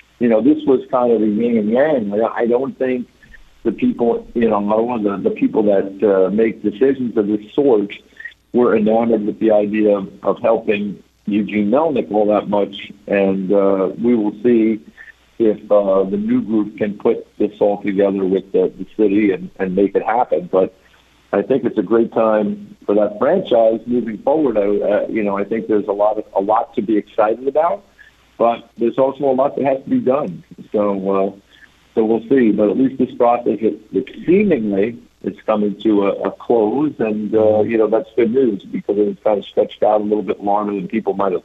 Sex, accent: male, American